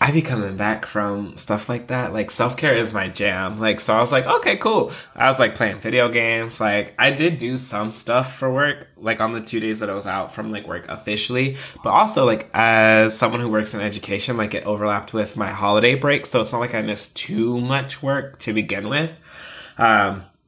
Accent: American